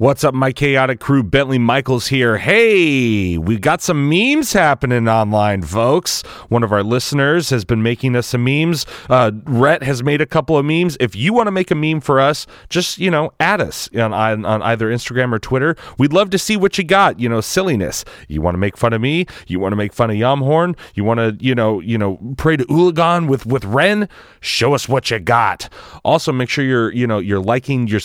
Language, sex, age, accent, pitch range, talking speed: English, male, 30-49, American, 105-150 Hz, 225 wpm